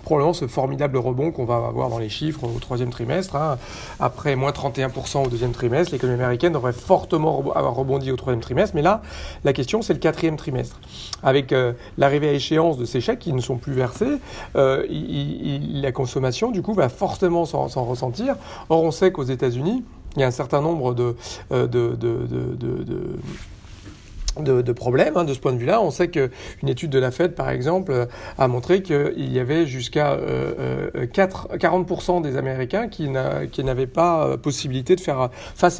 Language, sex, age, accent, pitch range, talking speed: French, male, 40-59, French, 130-165 Hz, 185 wpm